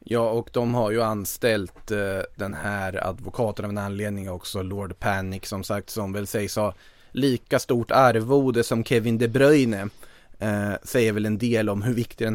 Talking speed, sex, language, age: 185 wpm, male, Swedish, 20-39